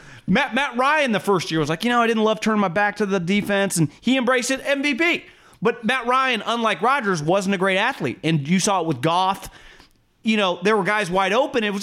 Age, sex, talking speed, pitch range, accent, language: 30-49, male, 245 wpm, 155-210 Hz, American, English